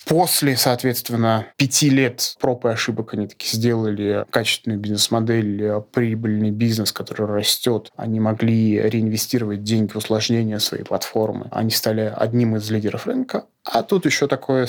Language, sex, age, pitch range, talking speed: Russian, male, 20-39, 110-135 Hz, 140 wpm